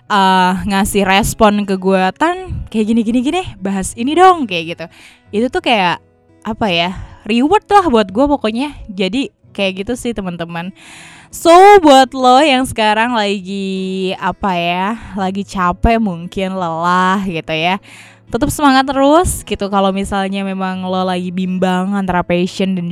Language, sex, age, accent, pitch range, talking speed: Indonesian, female, 20-39, native, 170-220 Hz, 140 wpm